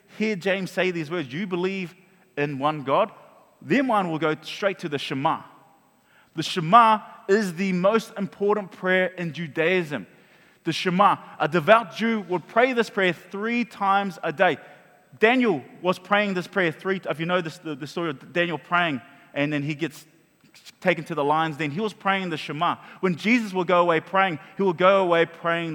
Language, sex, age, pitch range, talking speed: English, male, 20-39, 160-210 Hz, 190 wpm